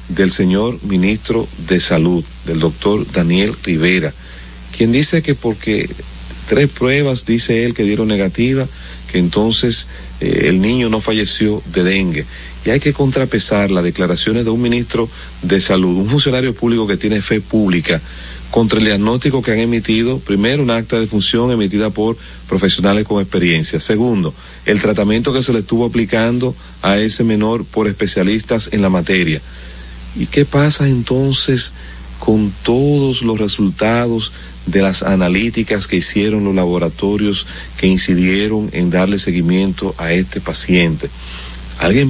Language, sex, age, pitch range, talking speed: Spanish, male, 40-59, 90-115 Hz, 145 wpm